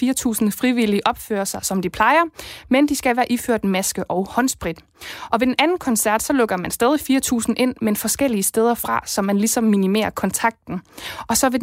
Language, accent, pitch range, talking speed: Danish, native, 200-245 Hz, 195 wpm